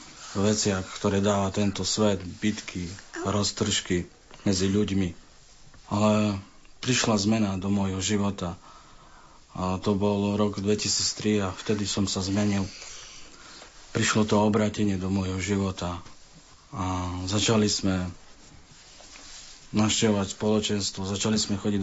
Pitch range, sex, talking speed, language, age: 95-105 Hz, male, 105 wpm, Slovak, 40-59